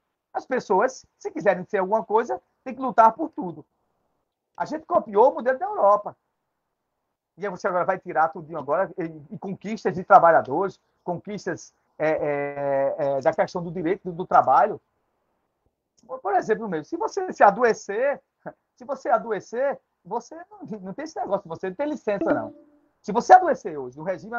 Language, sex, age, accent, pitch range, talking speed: Portuguese, male, 40-59, Brazilian, 190-265 Hz, 170 wpm